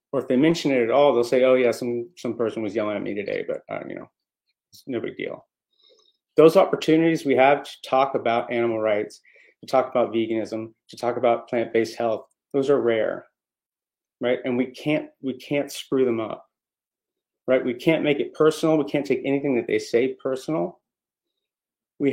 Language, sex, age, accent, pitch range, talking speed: English, male, 30-49, American, 120-155 Hz, 195 wpm